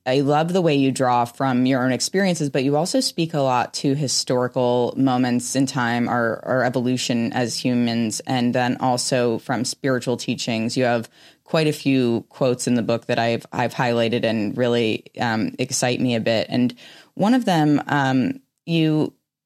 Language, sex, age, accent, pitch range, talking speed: English, female, 20-39, American, 125-145 Hz, 180 wpm